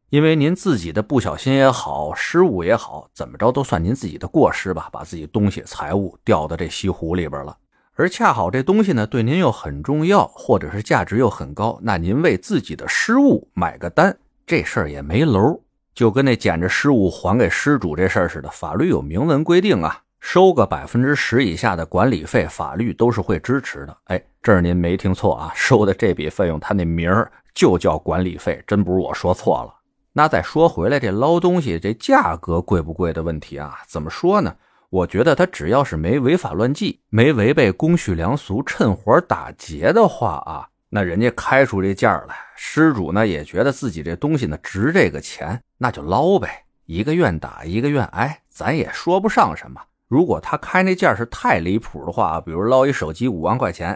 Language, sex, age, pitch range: Chinese, male, 30-49, 90-145 Hz